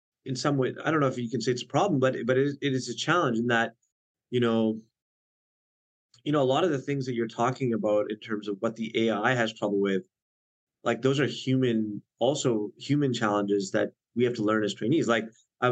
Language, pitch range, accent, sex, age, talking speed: English, 105-130 Hz, American, male, 30-49, 235 wpm